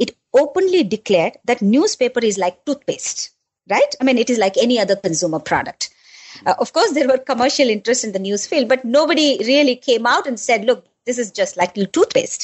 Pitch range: 185-280 Hz